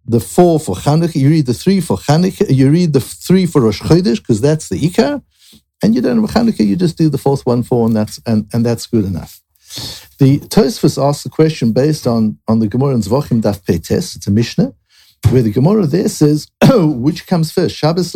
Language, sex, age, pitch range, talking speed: English, male, 60-79, 115-160 Hz, 215 wpm